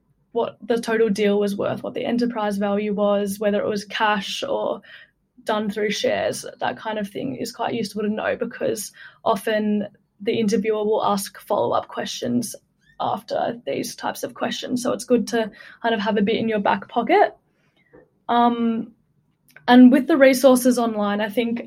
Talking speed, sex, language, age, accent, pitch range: 170 wpm, female, English, 10-29, Australian, 210-235 Hz